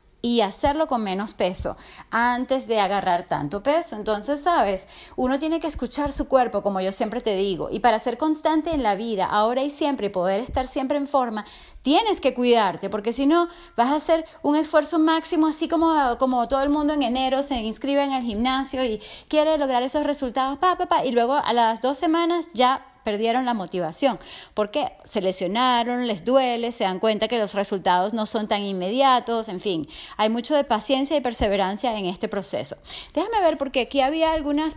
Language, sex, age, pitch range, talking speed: English, female, 30-49, 205-280 Hz, 190 wpm